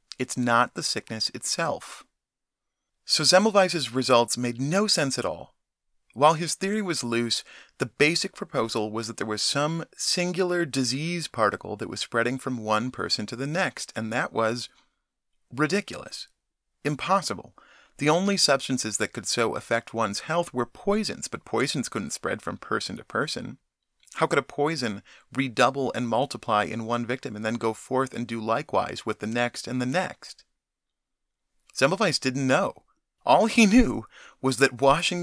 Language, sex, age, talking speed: English, male, 30-49, 160 wpm